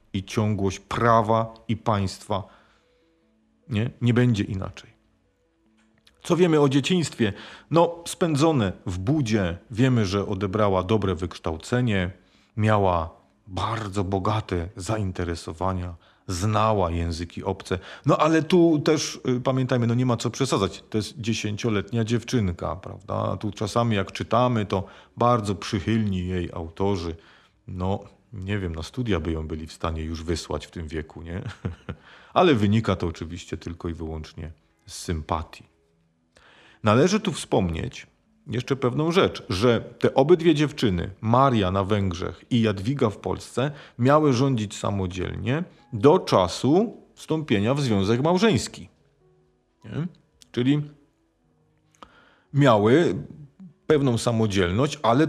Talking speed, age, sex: 120 wpm, 40-59, male